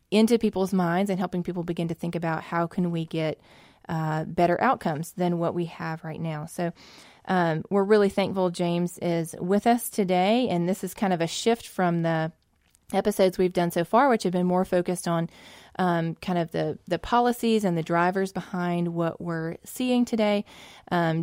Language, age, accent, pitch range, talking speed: English, 20-39, American, 165-185 Hz, 190 wpm